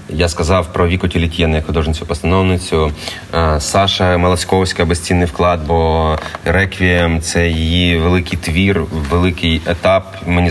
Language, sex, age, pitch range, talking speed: Ukrainian, male, 20-39, 85-95 Hz, 120 wpm